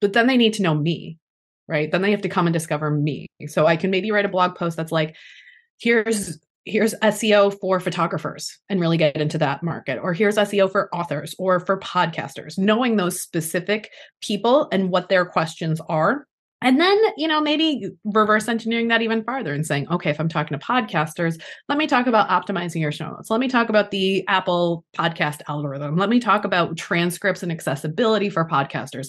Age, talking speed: 20-39, 200 wpm